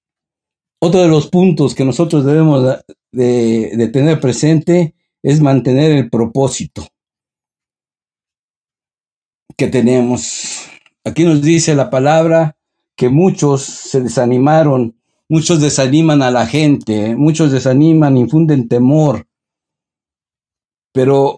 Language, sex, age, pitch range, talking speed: Spanish, male, 60-79, 115-150 Hz, 100 wpm